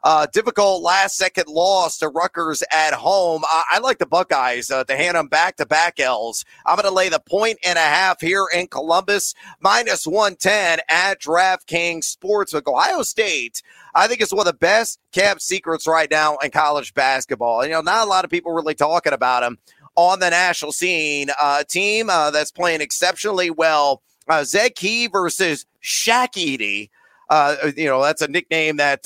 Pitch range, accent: 150-190 Hz, American